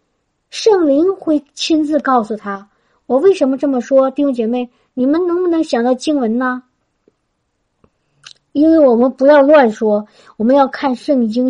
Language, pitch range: Chinese, 225-290 Hz